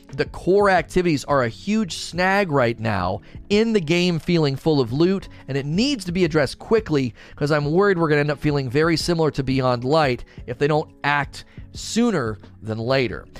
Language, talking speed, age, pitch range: English, 195 wpm, 40-59, 135-185 Hz